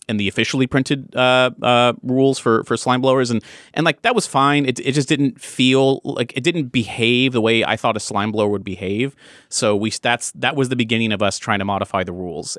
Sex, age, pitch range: male, 30-49, 100-130 Hz